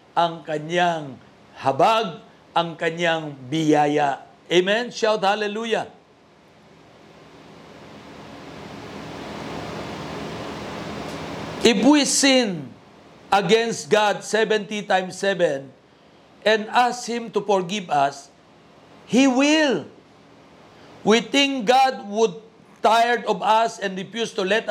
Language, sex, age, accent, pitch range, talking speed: Filipino, male, 50-69, native, 190-235 Hz, 85 wpm